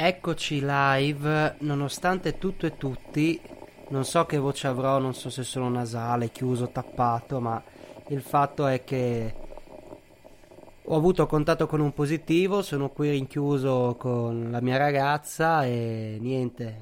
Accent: native